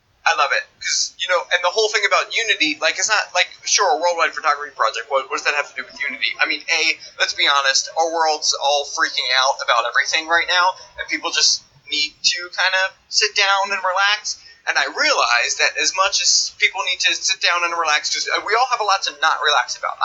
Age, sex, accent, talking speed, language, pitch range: 30-49, male, American, 240 wpm, Hebrew, 155-210 Hz